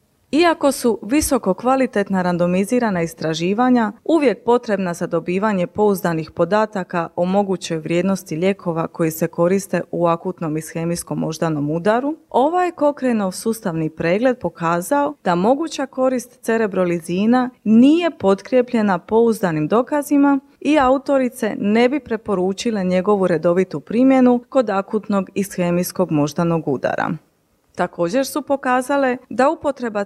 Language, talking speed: Croatian, 110 wpm